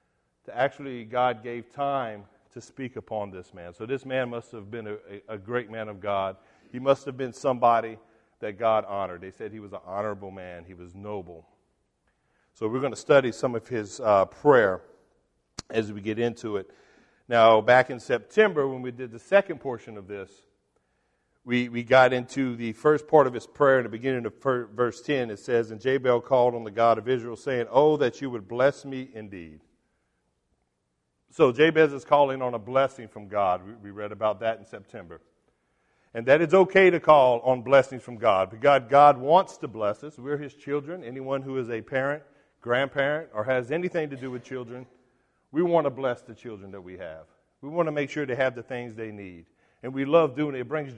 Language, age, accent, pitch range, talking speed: English, 50-69, American, 105-135 Hz, 205 wpm